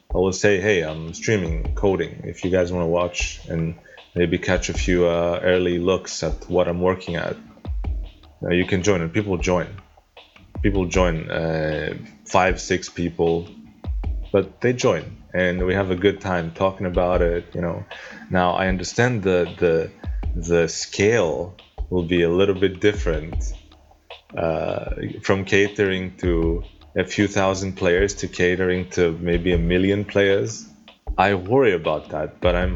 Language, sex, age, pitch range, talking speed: English, male, 20-39, 85-100 Hz, 160 wpm